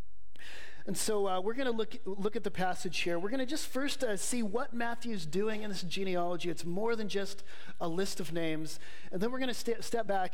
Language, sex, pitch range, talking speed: English, male, 170-220 Hz, 240 wpm